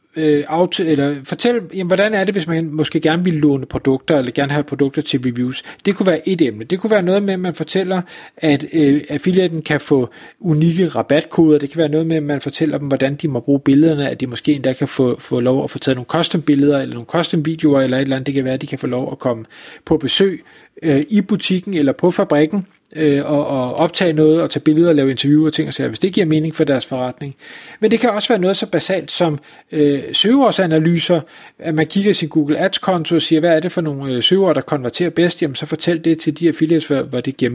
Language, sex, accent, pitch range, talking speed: Danish, male, native, 140-175 Hz, 245 wpm